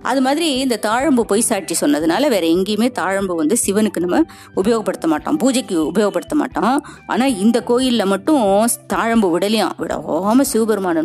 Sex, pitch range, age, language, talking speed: female, 180-270 Hz, 20-39, Tamil, 140 wpm